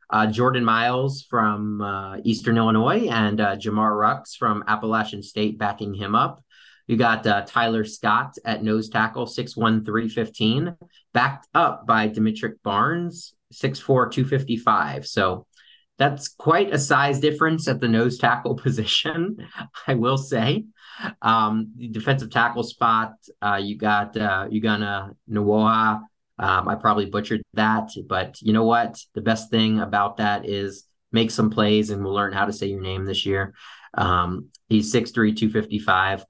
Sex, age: male, 30-49